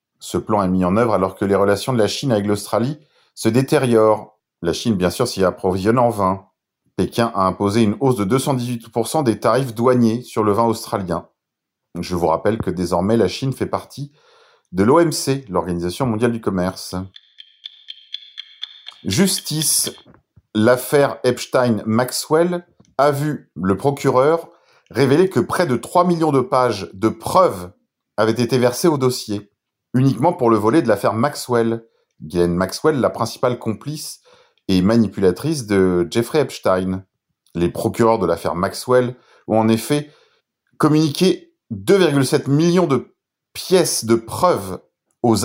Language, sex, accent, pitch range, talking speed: French, male, French, 105-150 Hz, 145 wpm